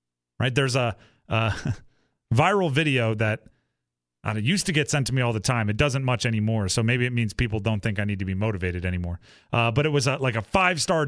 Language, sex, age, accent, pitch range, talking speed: English, male, 30-49, American, 105-155 Hz, 225 wpm